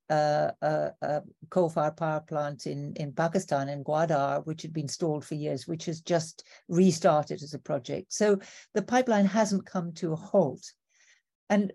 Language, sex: English, female